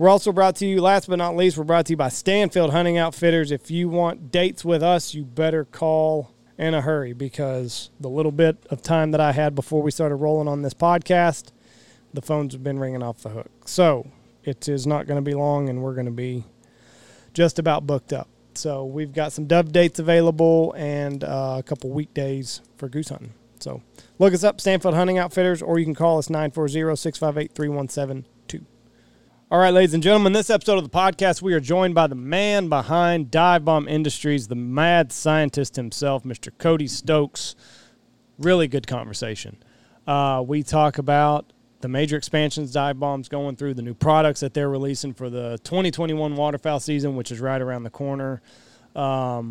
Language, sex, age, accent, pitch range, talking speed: English, male, 30-49, American, 130-165 Hz, 195 wpm